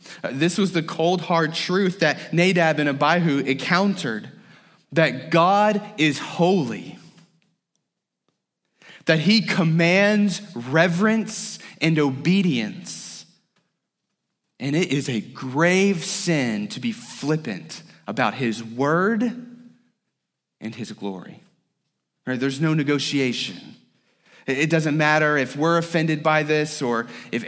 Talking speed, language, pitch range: 105 wpm, English, 145-185 Hz